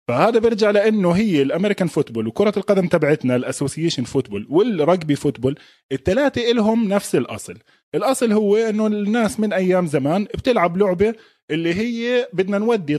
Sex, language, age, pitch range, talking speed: male, Arabic, 20-39, 145-215 Hz, 140 wpm